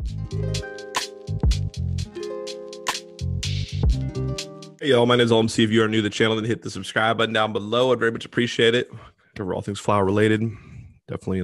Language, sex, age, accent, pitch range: English, male, 20-39, American, 95-115 Hz